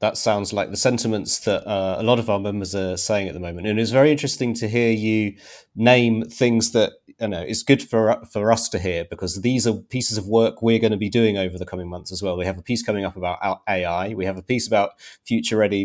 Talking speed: 260 wpm